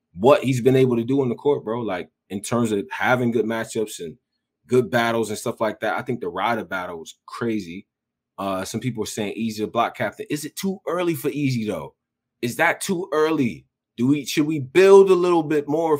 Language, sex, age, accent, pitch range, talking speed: English, male, 20-39, American, 100-135 Hz, 225 wpm